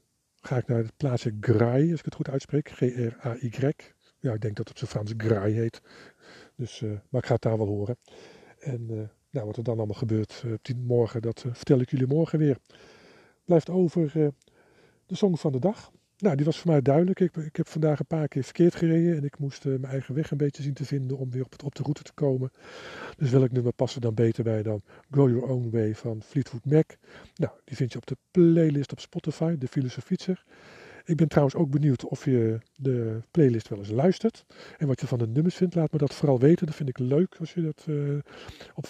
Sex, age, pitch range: male, 50-69, 120-155 Hz